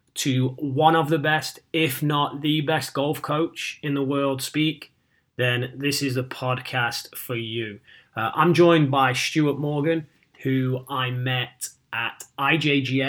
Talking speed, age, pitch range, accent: 150 wpm, 30-49, 130-145 Hz, British